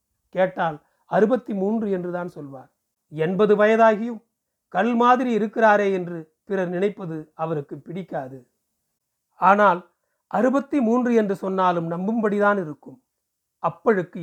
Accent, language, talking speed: native, Tamil, 95 wpm